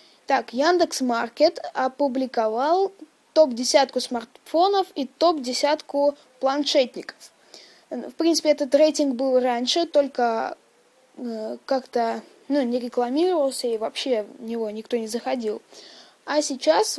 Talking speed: 110 wpm